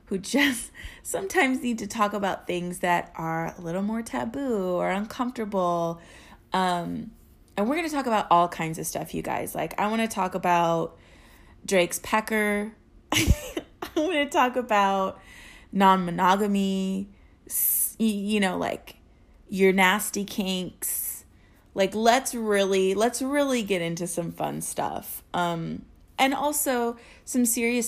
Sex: female